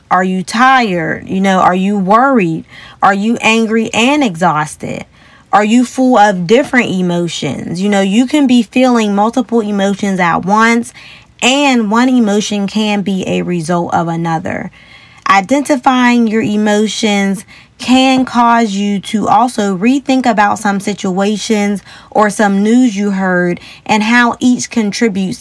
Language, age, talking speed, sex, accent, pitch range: English, 20-39, 140 wpm, female, American, 185-235 Hz